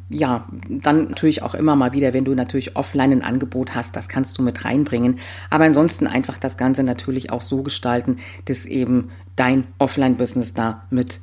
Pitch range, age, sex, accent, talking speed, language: 110-160 Hz, 40-59, female, German, 180 wpm, German